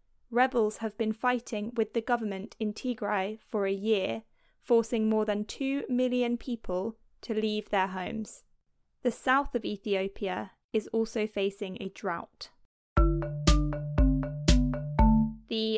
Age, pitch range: 20-39, 205-245 Hz